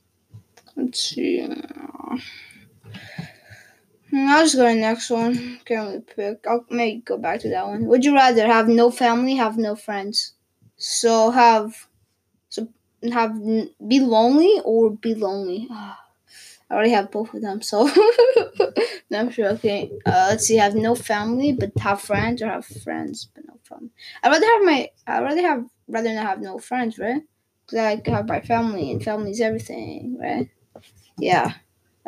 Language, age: English, 10-29